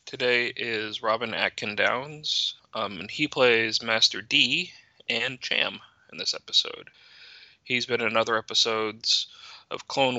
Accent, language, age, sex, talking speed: American, English, 20-39, male, 125 wpm